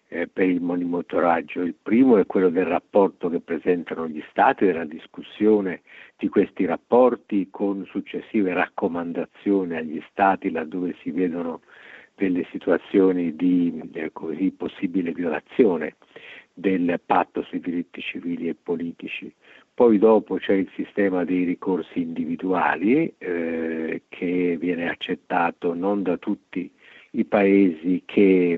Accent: native